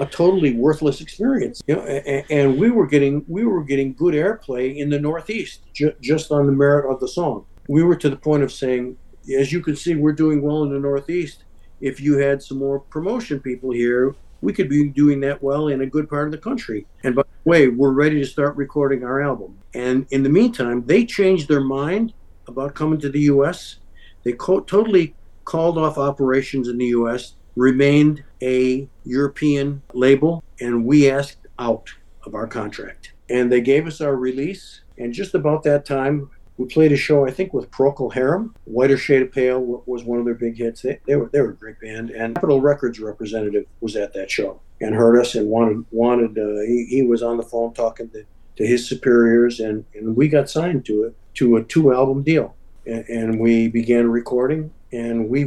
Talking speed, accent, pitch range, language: 200 wpm, American, 120-150 Hz, English